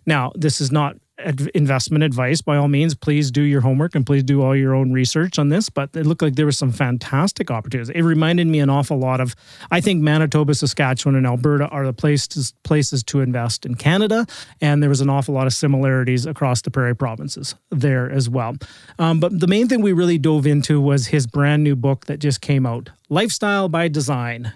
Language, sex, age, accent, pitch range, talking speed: English, male, 30-49, American, 130-155 Hz, 215 wpm